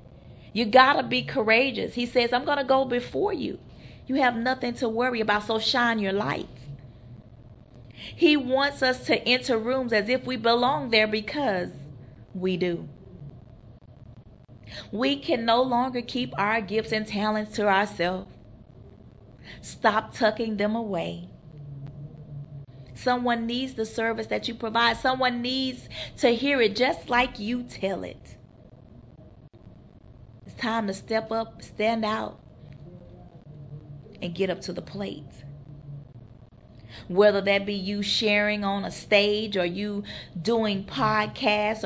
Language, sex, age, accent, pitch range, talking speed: English, female, 30-49, American, 145-235 Hz, 135 wpm